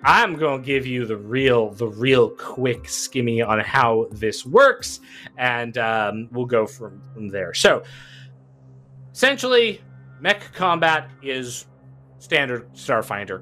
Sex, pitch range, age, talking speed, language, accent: male, 110-150 Hz, 30-49, 130 wpm, English, American